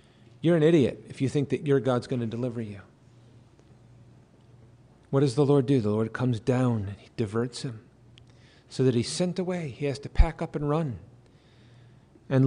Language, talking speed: English, 190 wpm